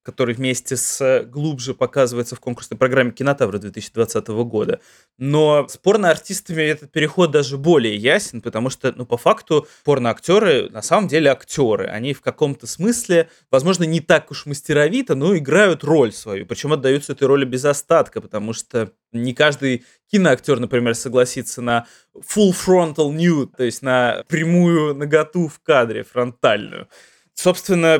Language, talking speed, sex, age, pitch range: Russian, 145 wpm, male, 20-39, 125-160 Hz